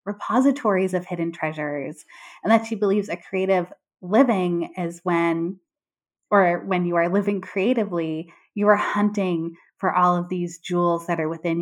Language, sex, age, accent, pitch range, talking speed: English, female, 20-39, American, 170-220 Hz, 155 wpm